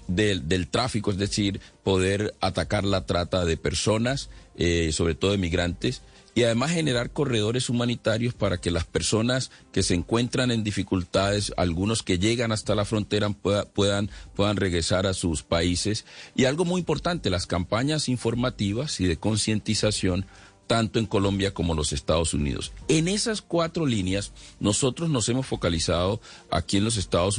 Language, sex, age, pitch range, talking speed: Spanish, male, 40-59, 90-115 Hz, 160 wpm